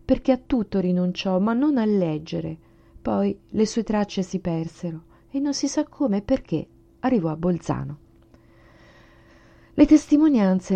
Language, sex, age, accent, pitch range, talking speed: Italian, female, 30-49, native, 165-210 Hz, 145 wpm